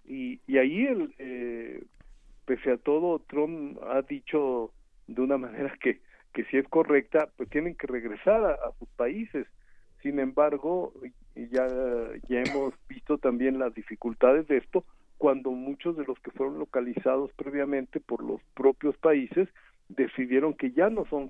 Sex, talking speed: male, 150 wpm